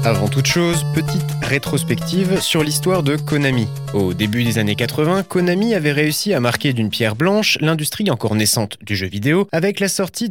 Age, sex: 20-39, male